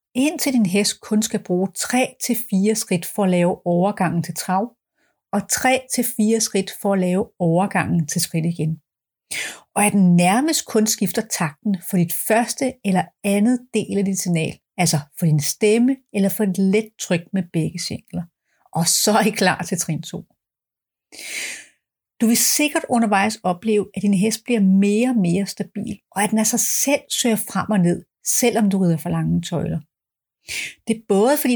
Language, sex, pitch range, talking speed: Danish, female, 180-225 Hz, 175 wpm